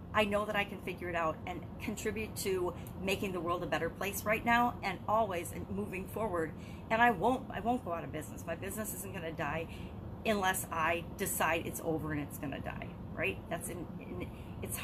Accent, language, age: American, English, 40-59